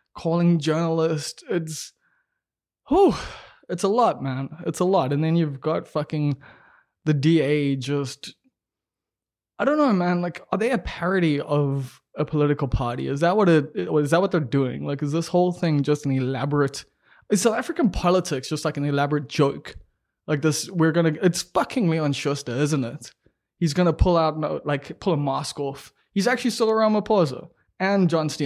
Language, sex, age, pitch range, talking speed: English, male, 20-39, 140-175 Hz, 175 wpm